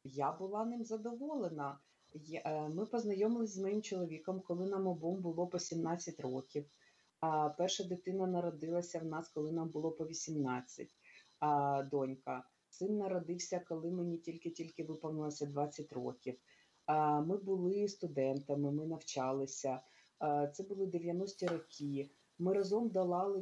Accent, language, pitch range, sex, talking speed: native, Ukrainian, 155-185 Hz, female, 120 wpm